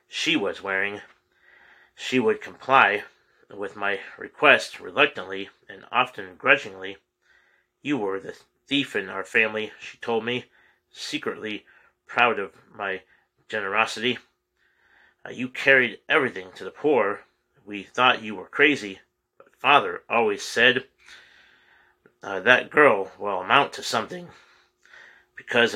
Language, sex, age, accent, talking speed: English, male, 30-49, American, 120 wpm